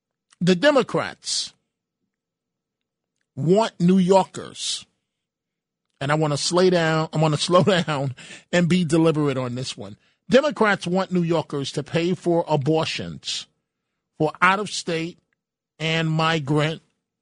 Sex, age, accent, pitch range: male, 40-59, American, 150-180 Hz